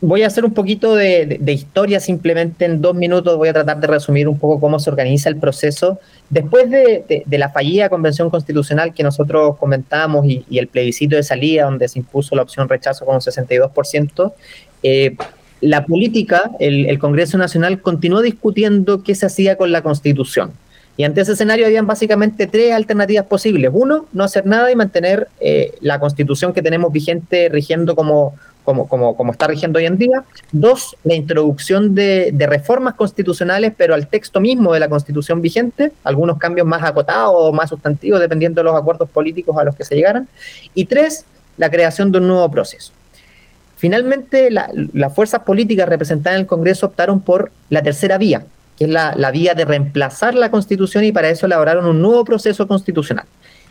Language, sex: Spanish, male